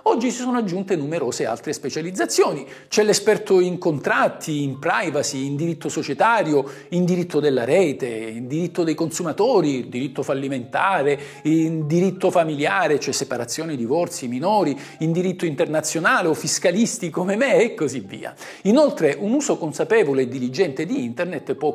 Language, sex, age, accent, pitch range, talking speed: Italian, male, 50-69, native, 135-195 Hz, 145 wpm